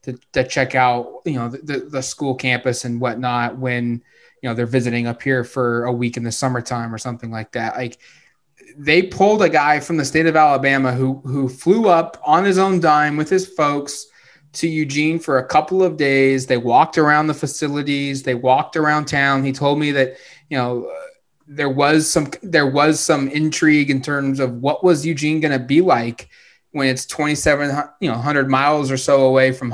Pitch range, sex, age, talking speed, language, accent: 130-155 Hz, male, 20-39, 200 wpm, English, American